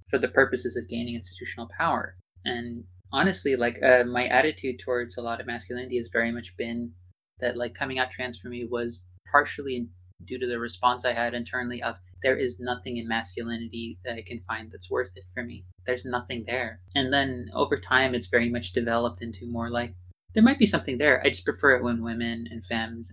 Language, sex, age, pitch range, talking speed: English, male, 30-49, 115-125 Hz, 210 wpm